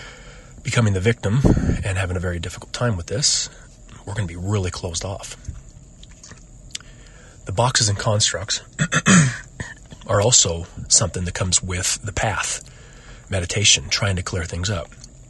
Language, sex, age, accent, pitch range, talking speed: English, male, 40-59, American, 95-120 Hz, 140 wpm